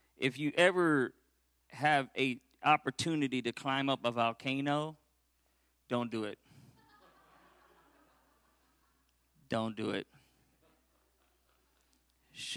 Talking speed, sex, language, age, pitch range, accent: 85 wpm, male, English, 40-59, 120-150 Hz, American